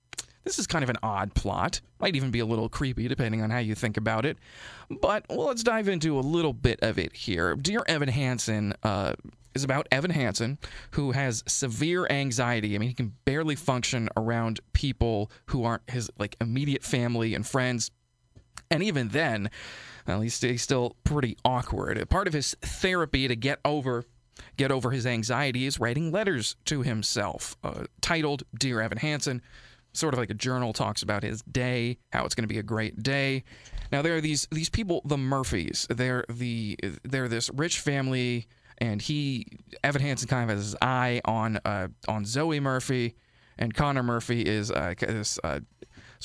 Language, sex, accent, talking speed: English, male, American, 185 wpm